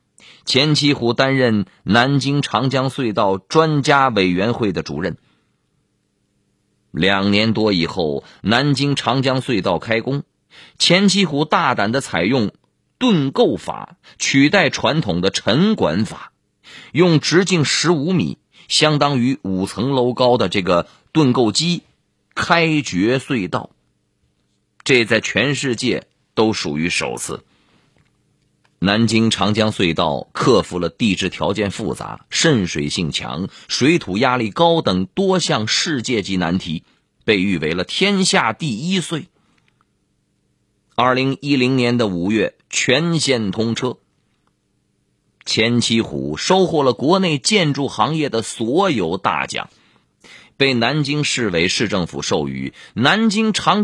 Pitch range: 110-155 Hz